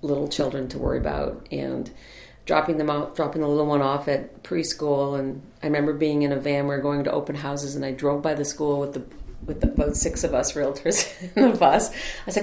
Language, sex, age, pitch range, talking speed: English, female, 40-59, 145-190 Hz, 235 wpm